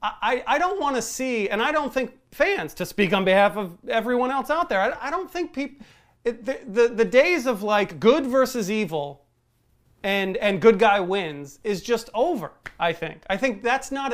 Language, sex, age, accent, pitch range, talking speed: English, male, 30-49, American, 190-255 Hz, 205 wpm